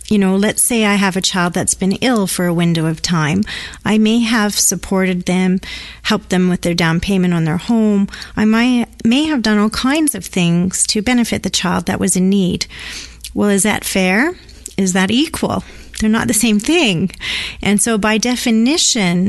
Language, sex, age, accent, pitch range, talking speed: English, female, 40-59, American, 180-220 Hz, 195 wpm